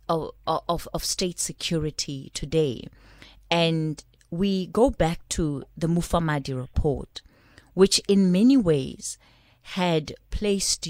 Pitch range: 150-215 Hz